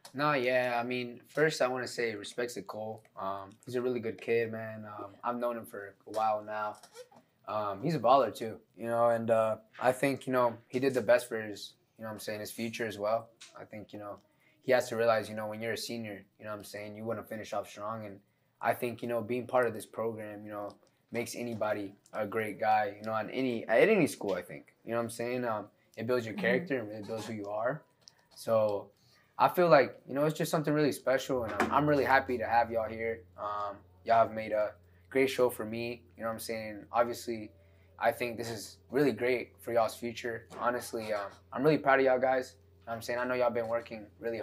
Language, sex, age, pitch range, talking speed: English, male, 20-39, 105-120 Hz, 250 wpm